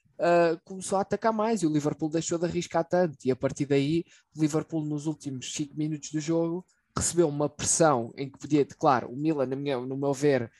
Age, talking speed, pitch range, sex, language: 20-39, 200 wpm, 130-160 Hz, male, Portuguese